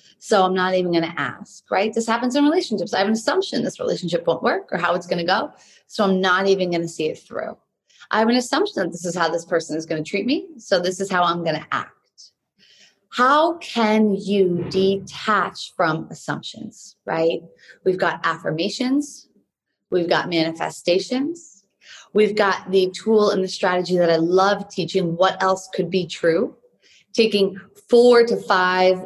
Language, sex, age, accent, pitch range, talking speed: English, female, 30-49, American, 180-230 Hz, 190 wpm